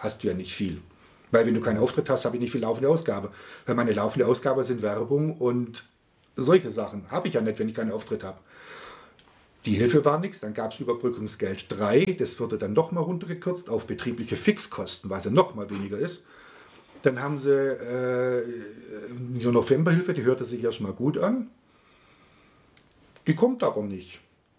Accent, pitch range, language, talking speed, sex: German, 110-145 Hz, German, 180 wpm, male